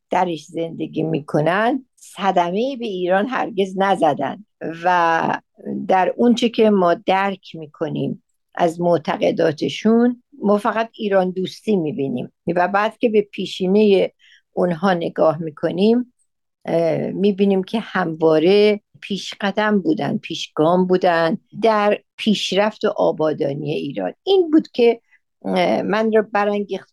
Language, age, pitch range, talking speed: Persian, 60-79, 165-220 Hz, 105 wpm